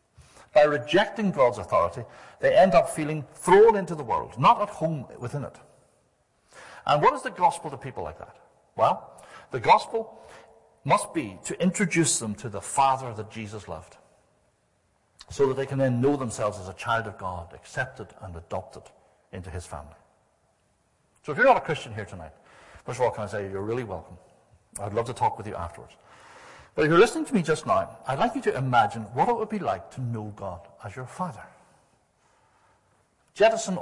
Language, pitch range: English, 105-160 Hz